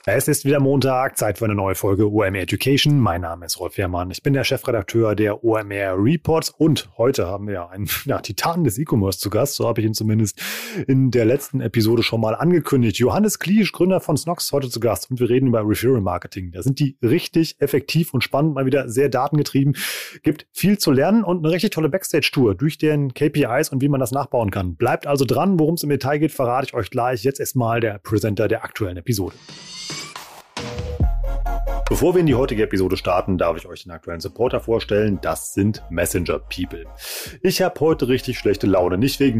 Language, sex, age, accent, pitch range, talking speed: German, male, 30-49, German, 105-140 Hz, 205 wpm